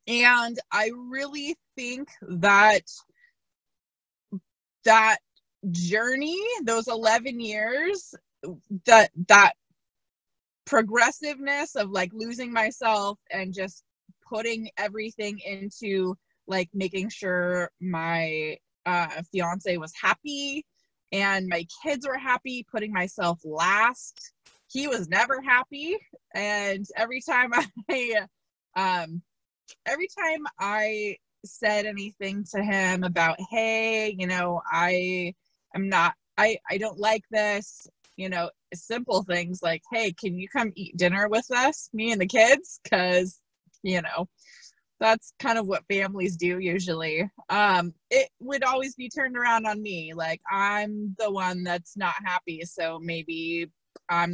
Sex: female